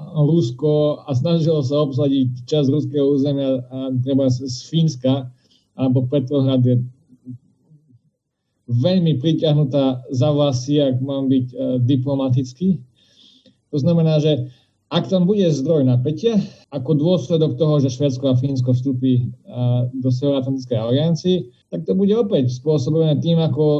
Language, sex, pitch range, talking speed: Slovak, male, 130-160 Hz, 125 wpm